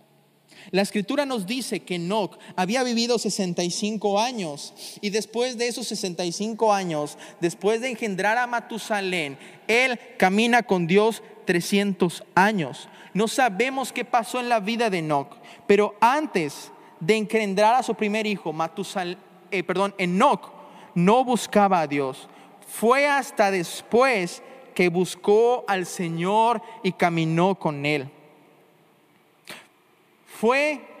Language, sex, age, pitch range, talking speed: Spanish, male, 30-49, 190-240 Hz, 120 wpm